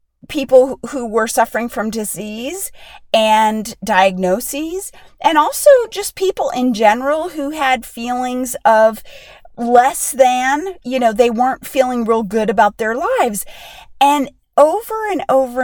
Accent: American